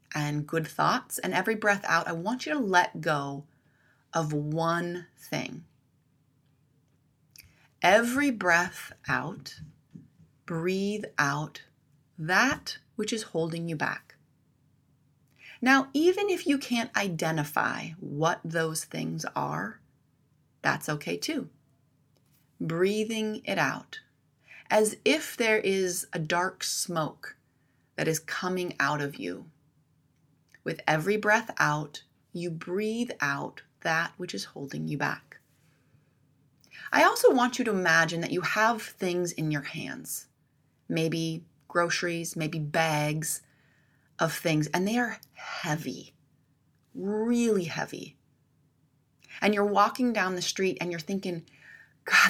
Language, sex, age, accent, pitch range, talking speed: English, female, 30-49, American, 145-195 Hz, 120 wpm